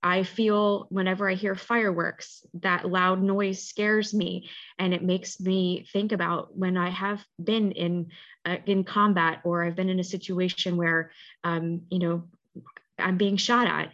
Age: 20-39